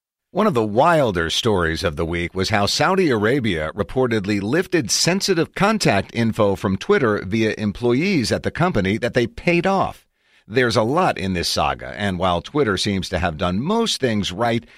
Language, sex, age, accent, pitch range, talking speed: English, male, 50-69, American, 95-140 Hz, 180 wpm